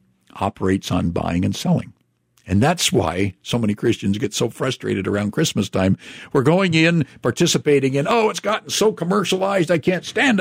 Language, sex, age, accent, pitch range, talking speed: English, male, 50-69, American, 105-145 Hz, 175 wpm